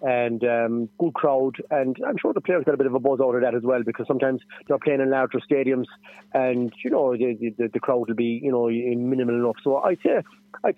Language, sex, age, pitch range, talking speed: English, male, 30-49, 120-140 Hz, 250 wpm